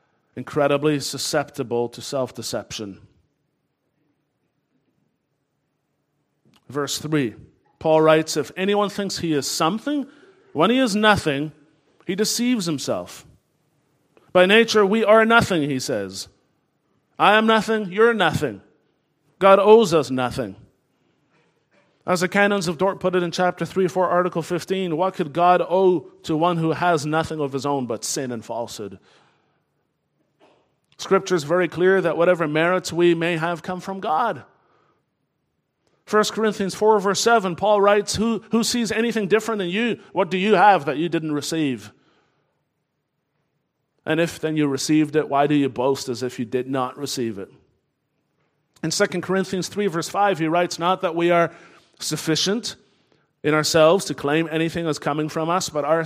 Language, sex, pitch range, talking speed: English, male, 145-195 Hz, 150 wpm